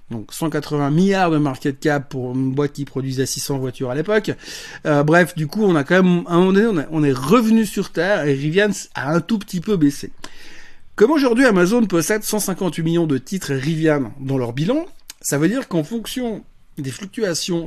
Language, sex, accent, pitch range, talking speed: French, male, French, 140-195 Hz, 195 wpm